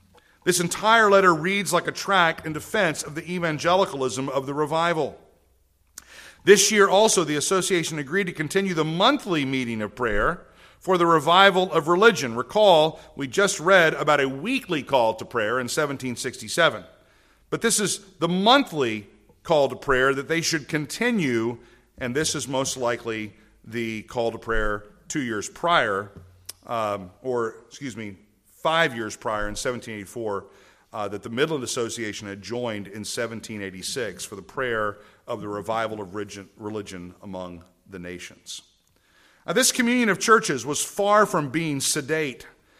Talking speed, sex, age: 150 wpm, male, 50-69